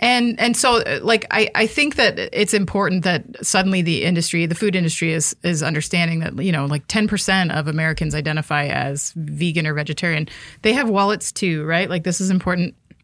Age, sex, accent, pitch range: 30-49, female, American, 165-195 Hz